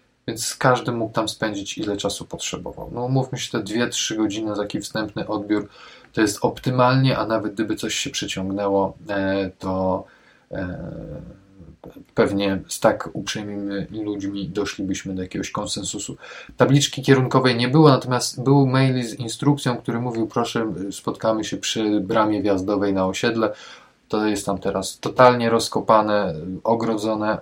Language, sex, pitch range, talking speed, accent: Polish, male, 100-120 Hz, 135 wpm, native